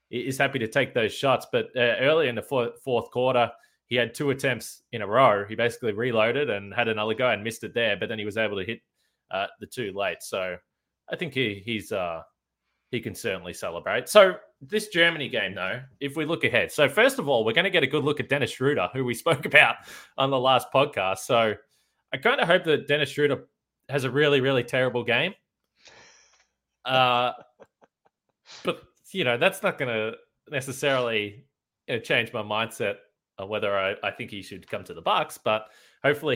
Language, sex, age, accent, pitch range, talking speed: English, male, 20-39, Australian, 115-140 Hz, 200 wpm